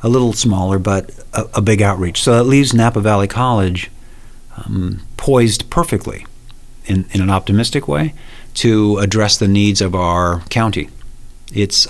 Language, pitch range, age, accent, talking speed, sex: English, 100-120 Hz, 50-69, American, 150 wpm, male